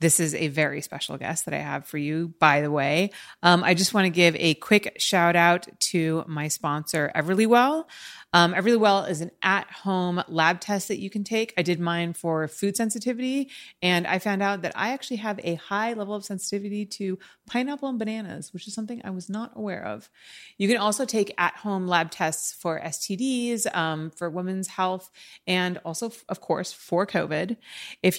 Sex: female